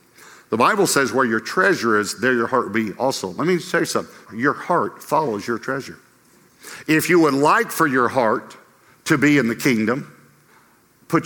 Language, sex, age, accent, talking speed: English, male, 50-69, American, 190 wpm